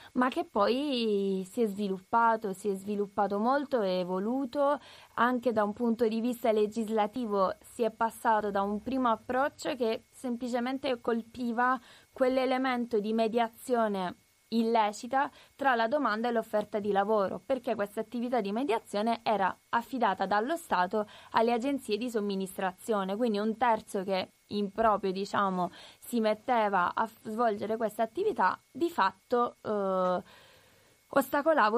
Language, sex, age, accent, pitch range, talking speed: Italian, female, 20-39, native, 200-245 Hz, 135 wpm